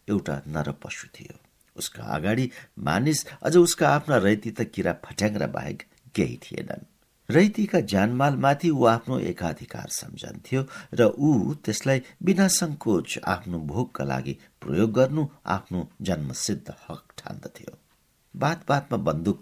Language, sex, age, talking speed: English, male, 60-79, 130 wpm